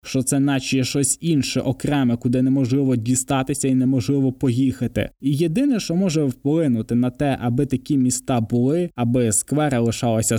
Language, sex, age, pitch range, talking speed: Ukrainian, male, 20-39, 125-155 Hz, 150 wpm